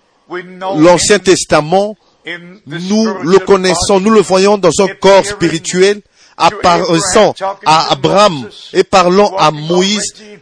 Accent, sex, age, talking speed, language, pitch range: French, male, 50-69, 110 wpm, French, 175-200 Hz